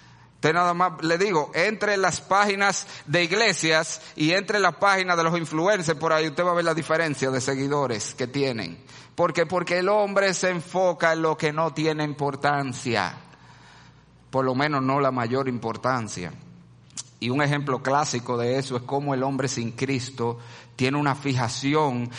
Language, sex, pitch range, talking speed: Spanish, male, 140-195 Hz, 170 wpm